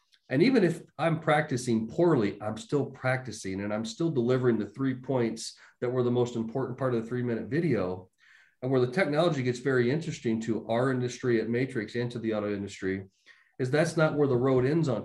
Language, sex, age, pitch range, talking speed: English, male, 40-59, 115-135 Hz, 205 wpm